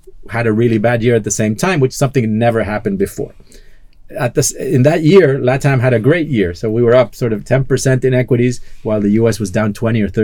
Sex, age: male, 40-59